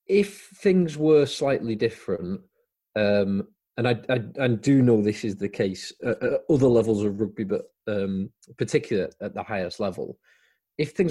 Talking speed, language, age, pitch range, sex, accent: 160 wpm, English, 30-49, 95-125 Hz, male, British